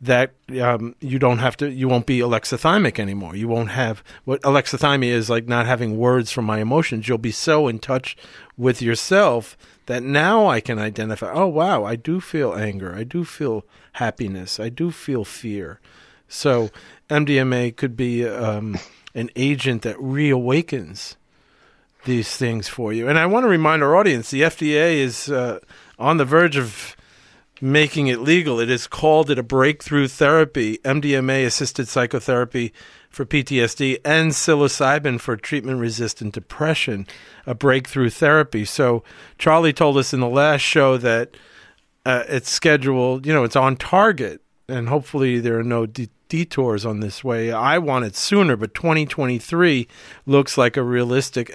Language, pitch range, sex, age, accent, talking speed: English, 115-145 Hz, male, 40-59, American, 160 wpm